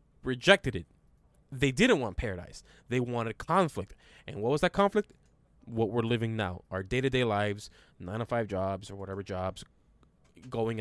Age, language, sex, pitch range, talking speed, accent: 20-39, English, male, 110-150 Hz, 150 wpm, American